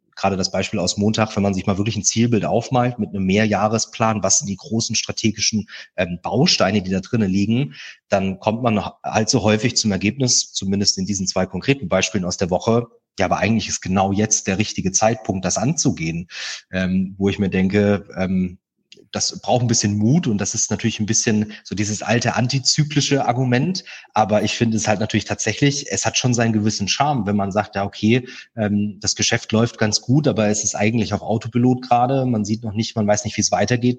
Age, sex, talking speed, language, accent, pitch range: 30-49, male, 205 wpm, German, German, 100-115 Hz